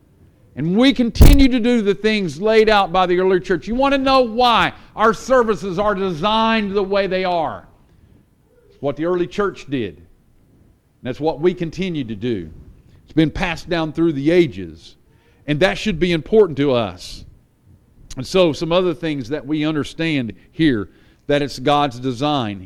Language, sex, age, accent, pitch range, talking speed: English, male, 50-69, American, 130-210 Hz, 170 wpm